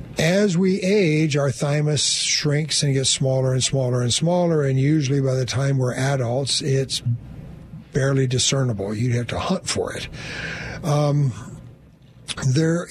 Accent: American